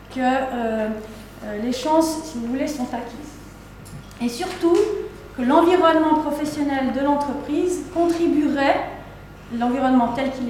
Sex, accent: female, French